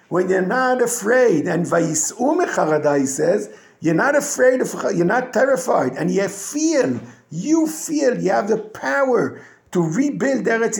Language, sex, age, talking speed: English, male, 50-69, 145 wpm